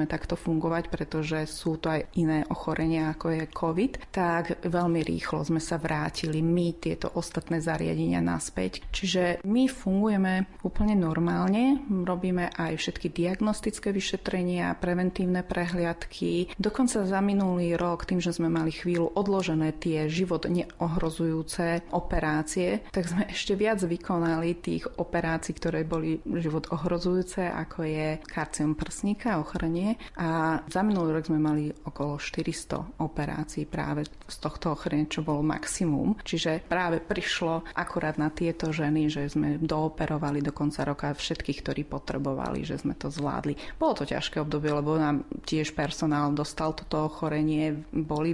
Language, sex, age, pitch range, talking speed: Slovak, female, 30-49, 155-175 Hz, 140 wpm